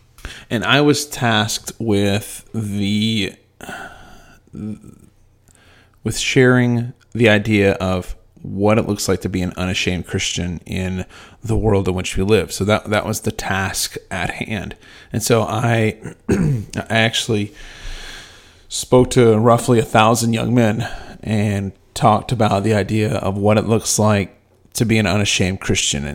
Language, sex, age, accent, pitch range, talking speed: English, male, 30-49, American, 95-110 Hz, 140 wpm